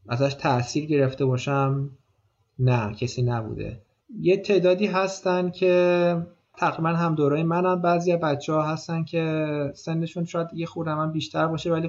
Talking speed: 140 wpm